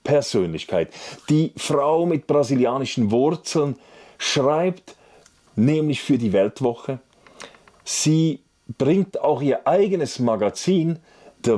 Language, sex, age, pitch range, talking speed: German, male, 40-59, 115-150 Hz, 95 wpm